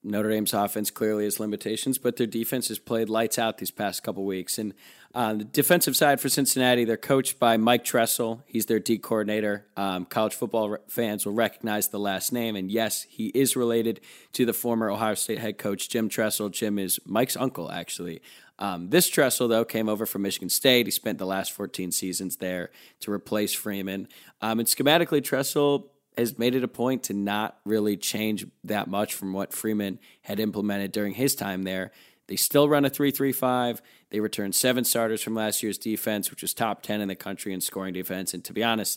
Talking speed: 210 wpm